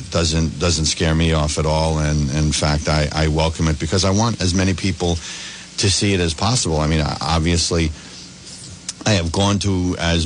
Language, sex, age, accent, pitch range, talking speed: English, male, 50-69, American, 80-90 Hz, 195 wpm